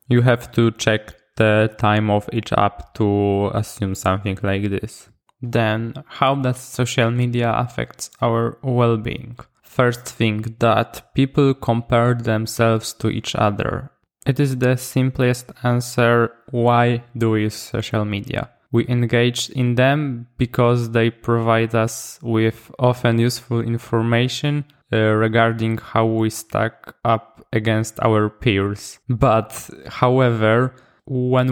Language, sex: English, male